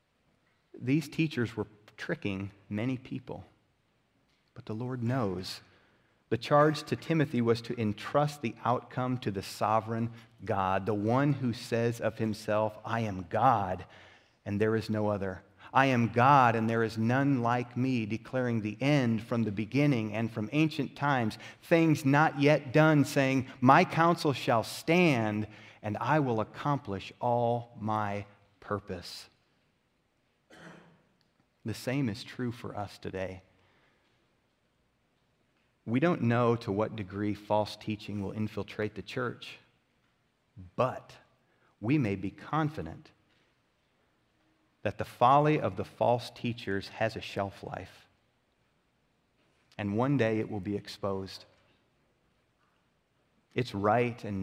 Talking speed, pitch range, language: 130 wpm, 105-130 Hz, English